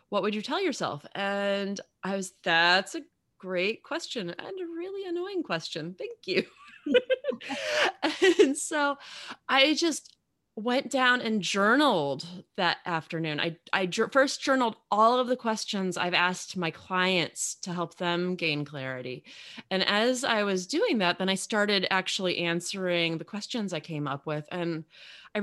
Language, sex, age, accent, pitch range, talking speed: English, female, 30-49, American, 175-250 Hz, 155 wpm